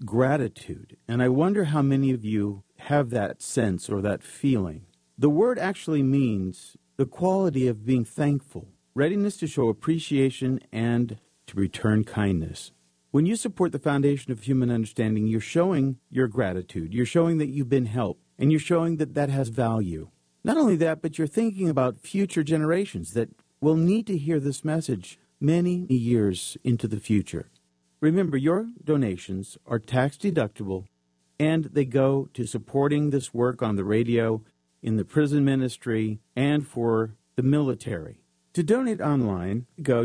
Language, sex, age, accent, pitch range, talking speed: English, male, 50-69, American, 110-150 Hz, 155 wpm